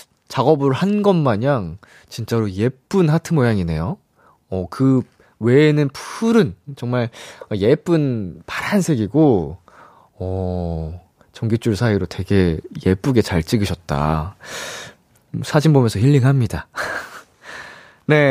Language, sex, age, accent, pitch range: Korean, male, 20-39, native, 115-185 Hz